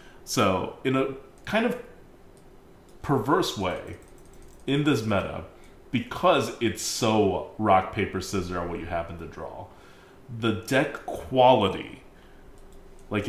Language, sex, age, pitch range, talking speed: English, male, 30-49, 95-135 Hz, 115 wpm